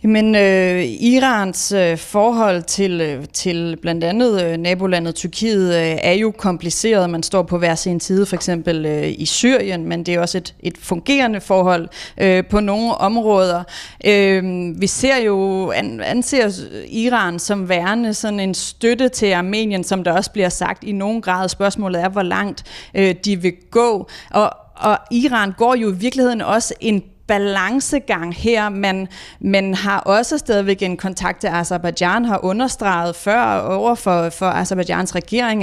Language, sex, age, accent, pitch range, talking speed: Danish, female, 30-49, native, 180-225 Hz, 165 wpm